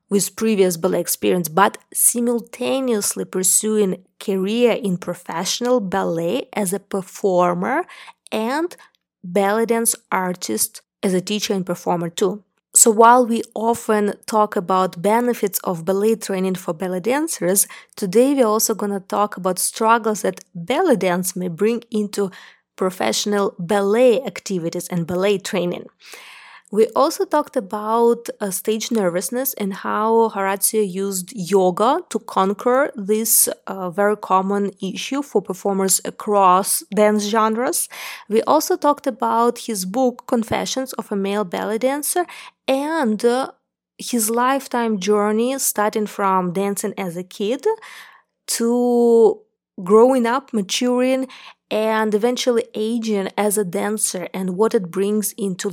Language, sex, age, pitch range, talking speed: English, female, 20-39, 190-235 Hz, 130 wpm